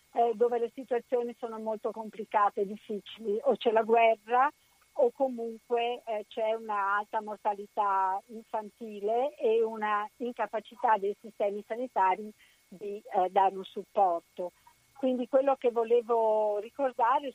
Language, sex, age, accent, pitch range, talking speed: Italian, female, 50-69, native, 205-245 Hz, 125 wpm